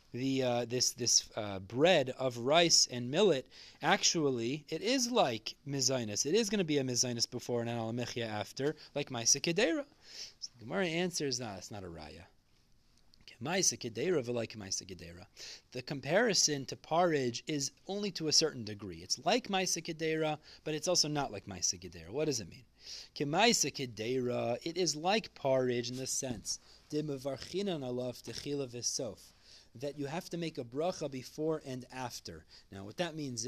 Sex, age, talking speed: male, 30-49, 150 wpm